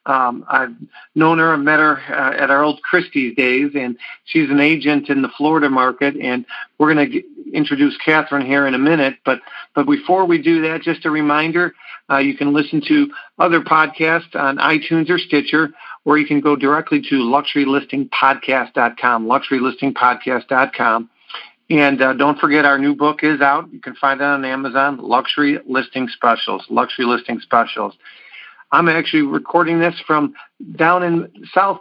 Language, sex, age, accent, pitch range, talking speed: English, male, 50-69, American, 135-155 Hz, 170 wpm